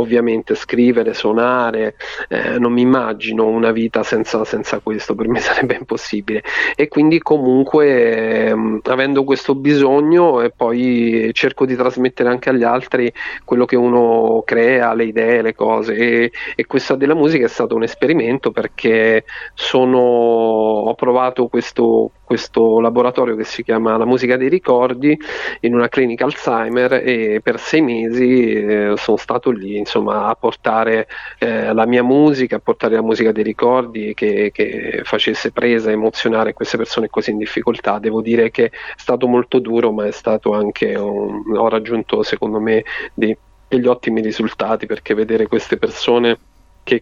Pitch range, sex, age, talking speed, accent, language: 110-125 Hz, male, 40-59, 155 wpm, native, Italian